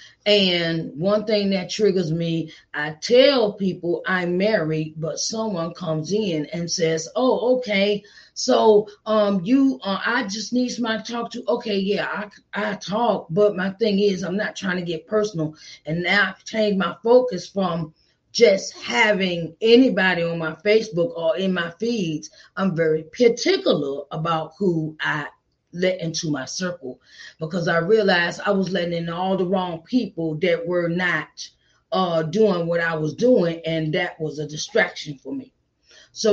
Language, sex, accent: English, female, American